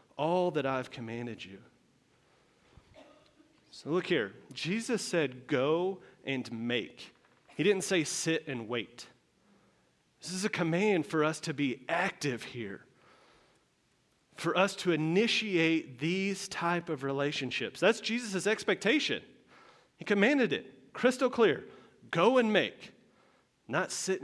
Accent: American